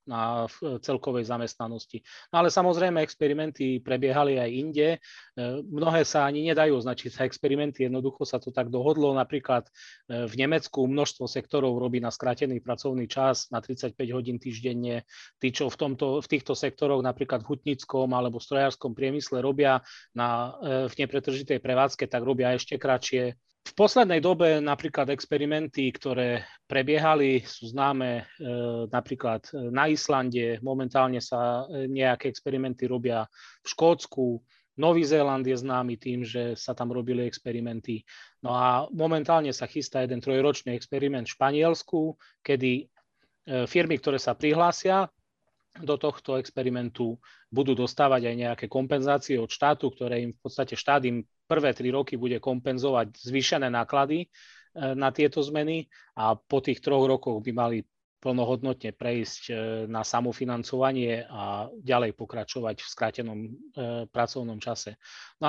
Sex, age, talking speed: male, 30-49, 135 wpm